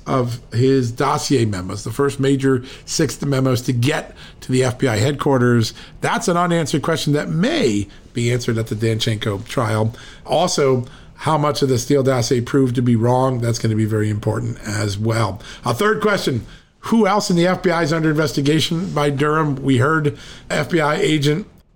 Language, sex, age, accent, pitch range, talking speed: English, male, 50-69, American, 125-150 Hz, 175 wpm